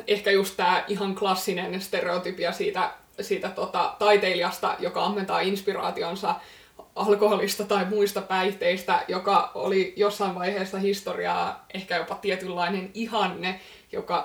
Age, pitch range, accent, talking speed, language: 20-39, 190-215 Hz, native, 115 wpm, Finnish